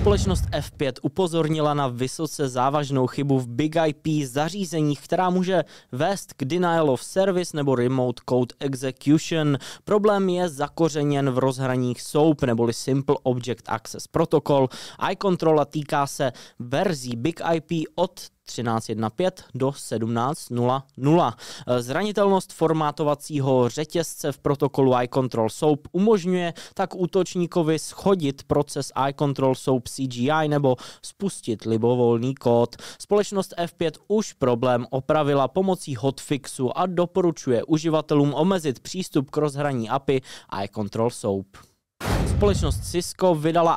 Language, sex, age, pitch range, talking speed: Czech, male, 20-39, 125-160 Hz, 110 wpm